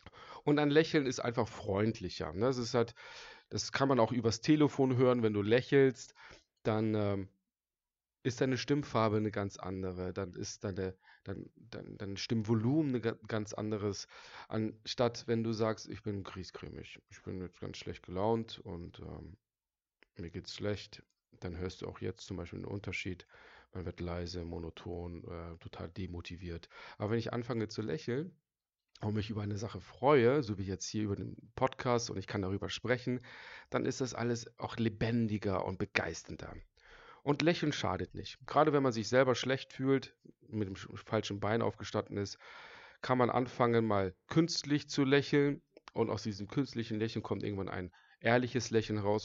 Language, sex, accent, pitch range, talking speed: German, male, German, 95-125 Hz, 165 wpm